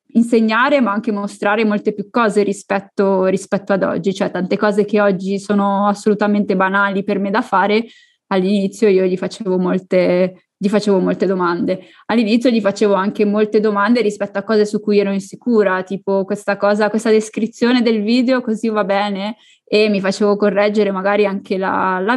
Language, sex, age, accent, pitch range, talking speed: Italian, female, 20-39, native, 200-220 Hz, 170 wpm